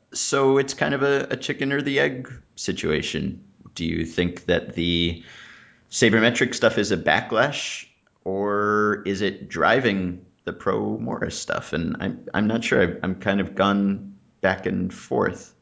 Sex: male